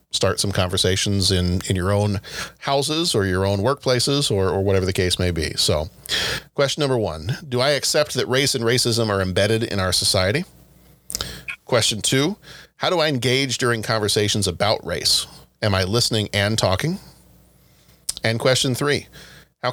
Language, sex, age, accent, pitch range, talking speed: English, male, 40-59, American, 95-130 Hz, 165 wpm